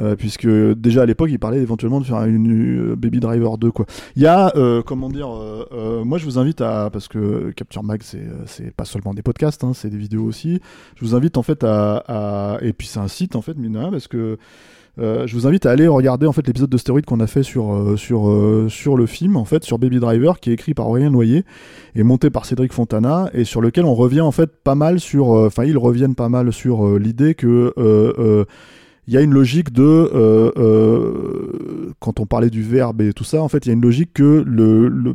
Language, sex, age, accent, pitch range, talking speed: French, male, 20-39, French, 110-135 Hz, 250 wpm